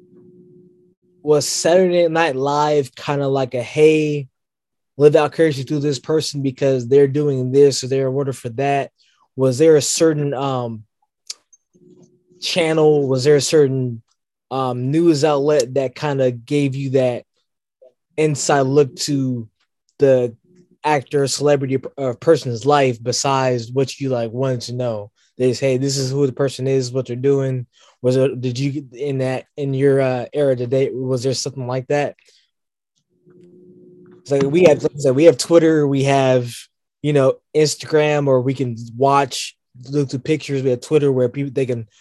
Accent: American